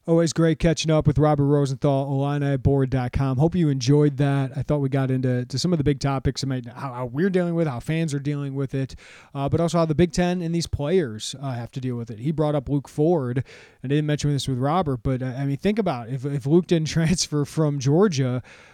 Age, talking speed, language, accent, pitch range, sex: 30-49, 245 wpm, English, American, 130-160 Hz, male